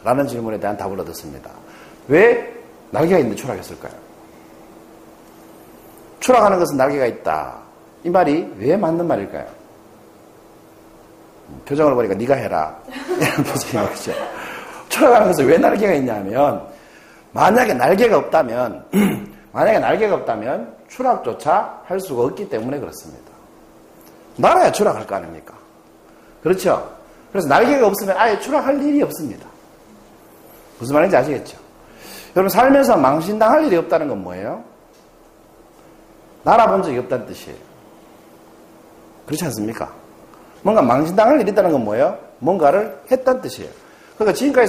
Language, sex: Korean, male